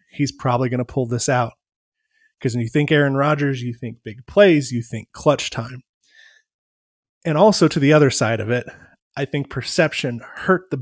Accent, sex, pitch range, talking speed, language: American, male, 120-145 Hz, 190 wpm, English